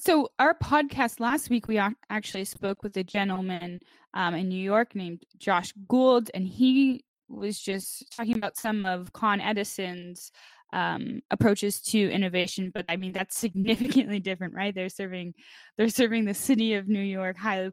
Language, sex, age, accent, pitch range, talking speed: English, female, 10-29, American, 185-225 Hz, 165 wpm